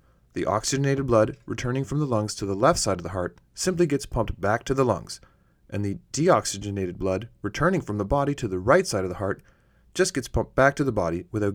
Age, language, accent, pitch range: 30-49, English, American, 95-125 Hz